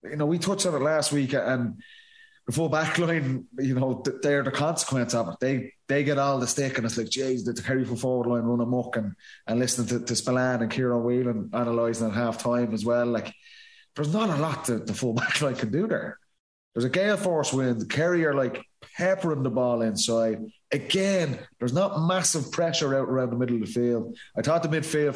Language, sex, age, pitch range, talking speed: English, male, 20-39, 120-145 Hz, 225 wpm